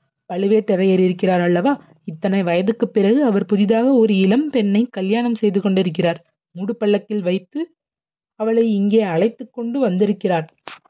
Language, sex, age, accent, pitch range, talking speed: Tamil, female, 30-49, native, 175-225 Hz, 120 wpm